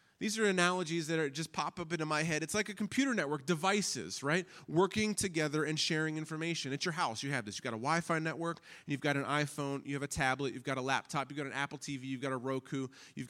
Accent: American